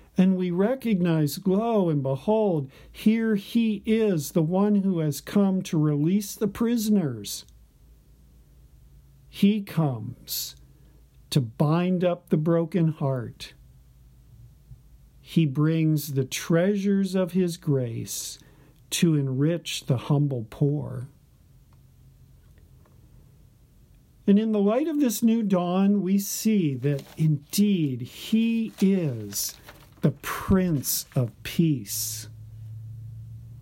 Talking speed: 100 wpm